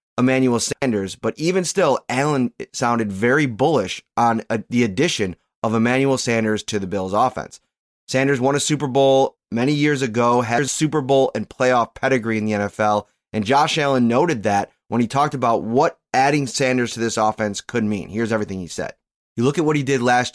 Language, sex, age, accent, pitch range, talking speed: English, male, 20-39, American, 110-130 Hz, 190 wpm